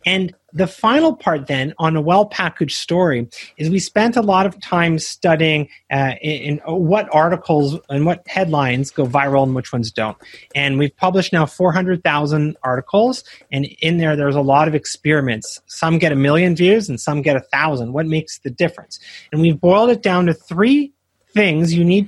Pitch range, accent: 145-190 Hz, American